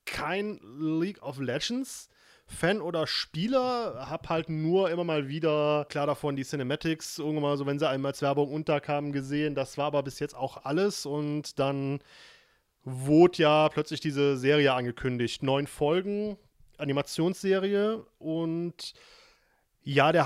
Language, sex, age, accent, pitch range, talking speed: German, male, 30-49, German, 140-175 Hz, 140 wpm